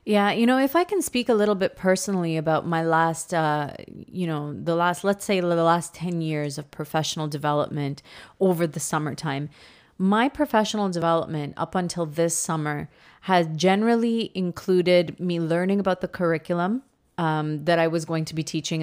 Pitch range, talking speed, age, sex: 160-190 Hz, 170 wpm, 30-49, female